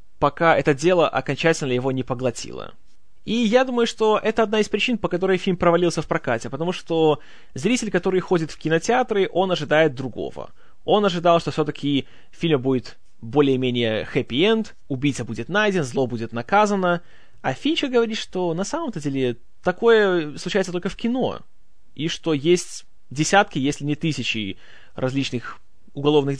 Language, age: Russian, 20-39